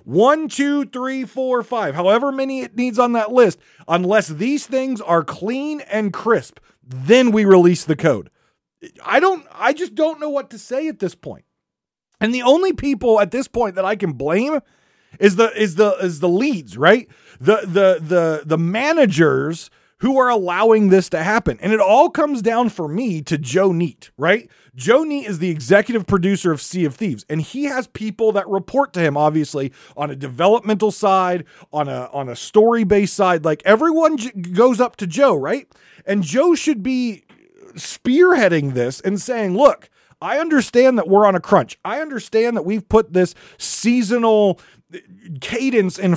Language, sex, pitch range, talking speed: English, male, 170-245 Hz, 180 wpm